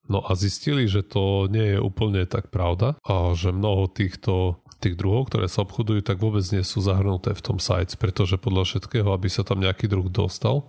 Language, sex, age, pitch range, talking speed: Slovak, male, 30-49, 90-105 Hz, 200 wpm